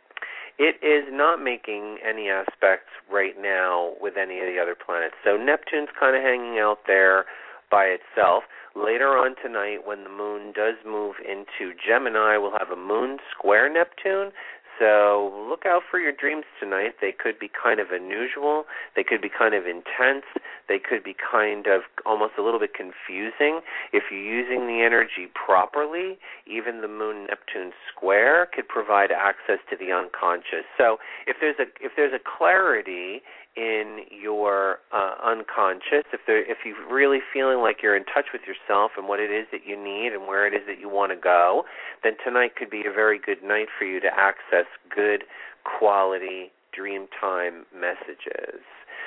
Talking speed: 175 wpm